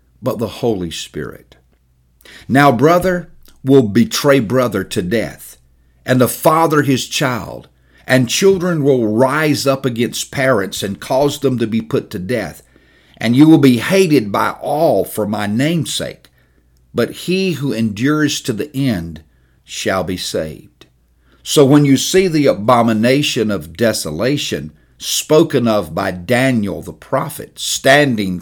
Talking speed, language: 140 wpm, English